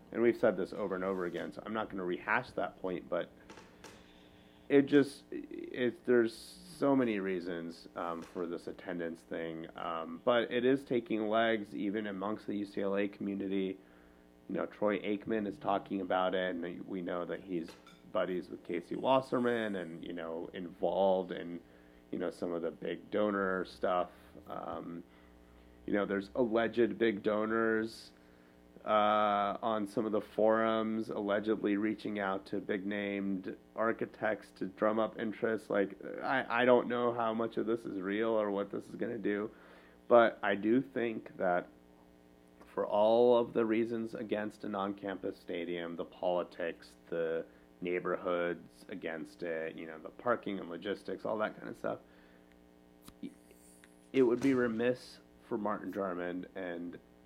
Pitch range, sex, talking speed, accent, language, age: 80-110 Hz, male, 155 wpm, American, English, 30-49